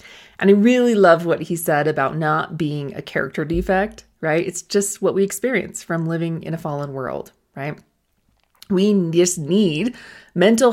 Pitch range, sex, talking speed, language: 160-210 Hz, female, 170 wpm, English